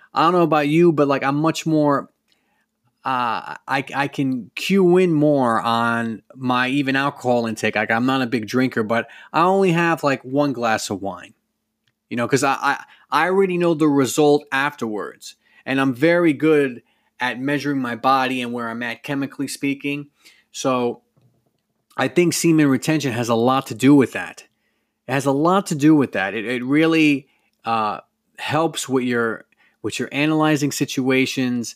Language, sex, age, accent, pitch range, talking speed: English, male, 30-49, American, 120-155 Hz, 175 wpm